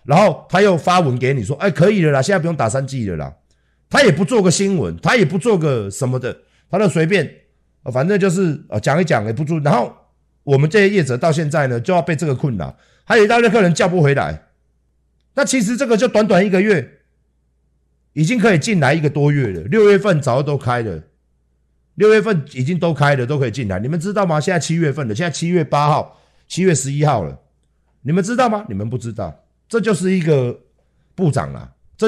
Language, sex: Chinese, male